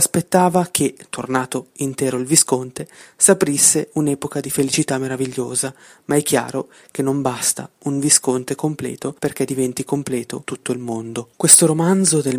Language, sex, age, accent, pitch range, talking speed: Italian, female, 30-49, native, 135-160 Hz, 140 wpm